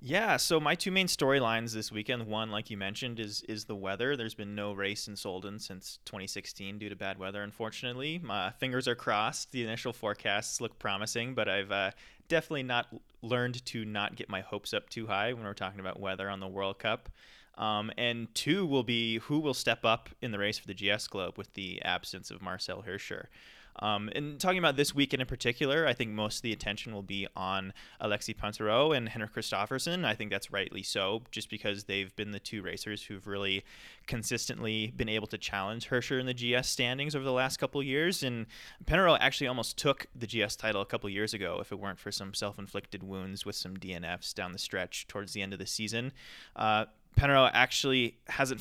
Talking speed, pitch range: 210 wpm, 100-125 Hz